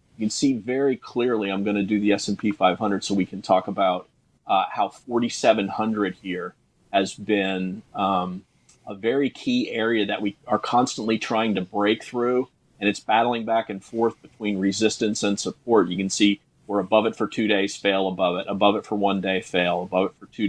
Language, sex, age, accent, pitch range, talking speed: English, male, 30-49, American, 100-120 Hz, 200 wpm